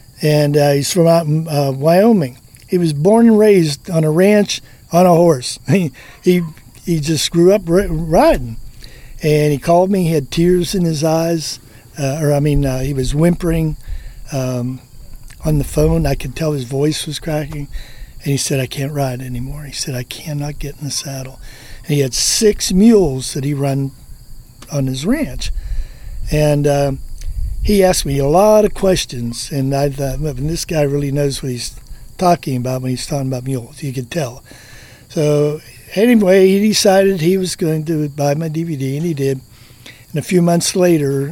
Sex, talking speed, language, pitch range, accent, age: male, 190 wpm, English, 130-165 Hz, American, 50-69